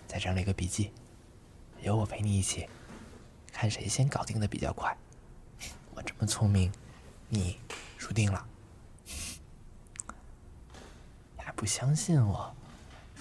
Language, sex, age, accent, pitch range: Chinese, male, 20-39, native, 95-115 Hz